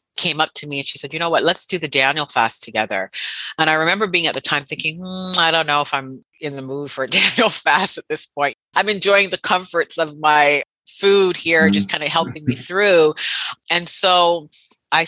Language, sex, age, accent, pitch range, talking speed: English, female, 30-49, American, 135-165 Hz, 225 wpm